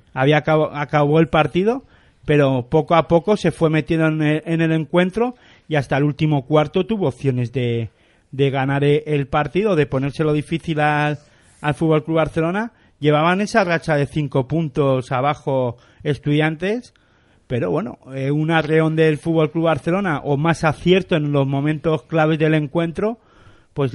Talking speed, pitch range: 160 wpm, 135-160 Hz